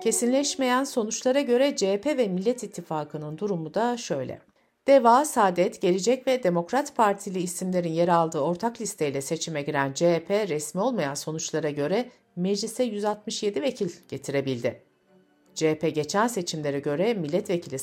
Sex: female